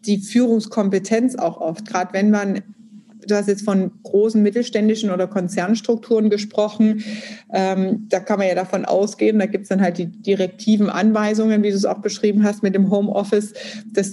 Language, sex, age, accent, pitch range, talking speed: German, female, 30-49, German, 190-220 Hz, 175 wpm